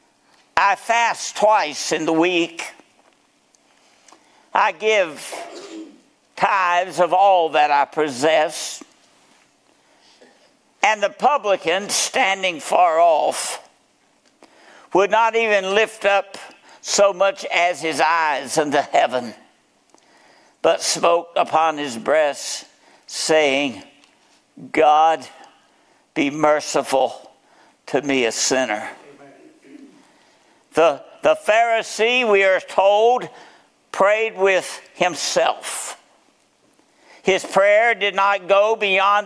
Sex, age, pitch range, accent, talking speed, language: male, 60-79, 180-225 Hz, American, 90 wpm, English